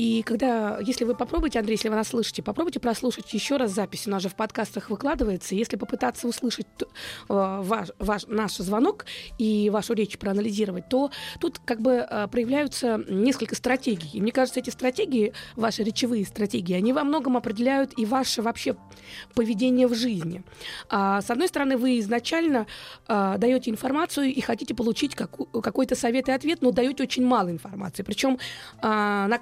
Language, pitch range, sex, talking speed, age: Russian, 220-270 Hz, female, 160 wpm, 20-39